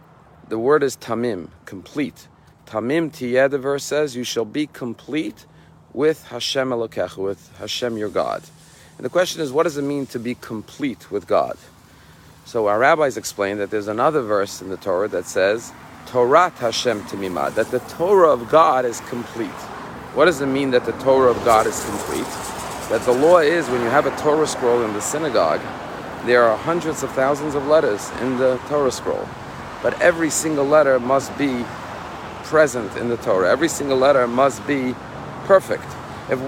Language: English